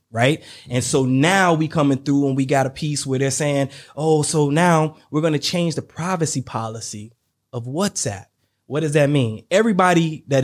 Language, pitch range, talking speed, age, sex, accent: English, 125-175 Hz, 190 wpm, 20-39, male, American